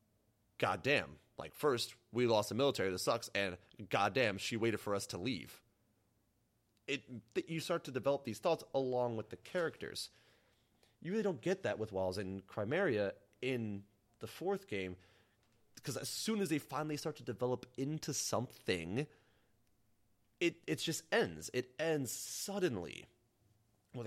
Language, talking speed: English, 155 wpm